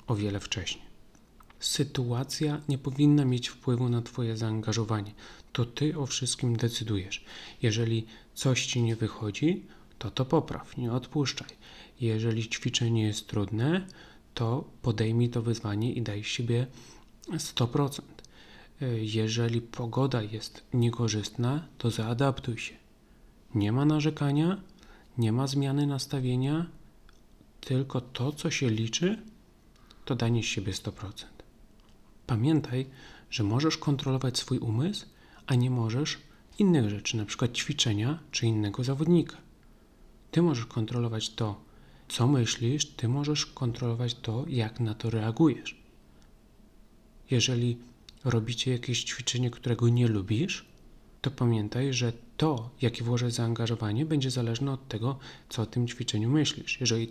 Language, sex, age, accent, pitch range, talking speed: Polish, male, 40-59, native, 115-135 Hz, 125 wpm